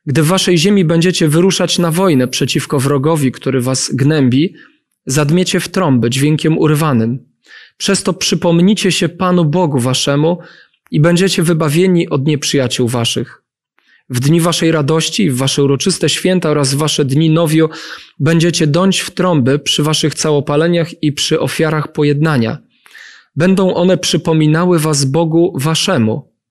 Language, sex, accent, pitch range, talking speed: Polish, male, native, 140-170 Hz, 140 wpm